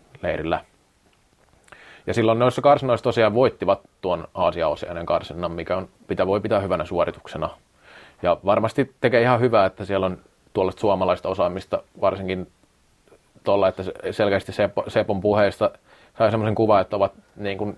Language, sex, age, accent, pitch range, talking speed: Finnish, male, 30-49, native, 95-110 Hz, 135 wpm